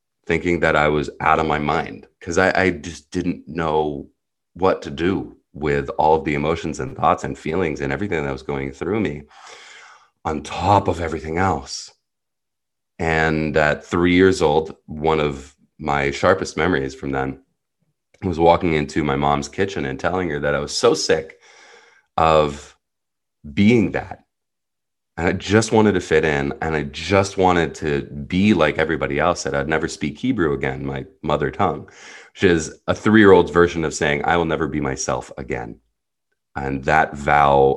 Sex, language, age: male, English, 30-49